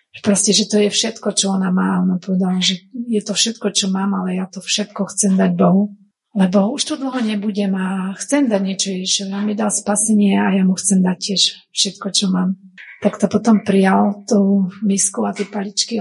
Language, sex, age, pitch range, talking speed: Slovak, female, 30-49, 195-215 Hz, 205 wpm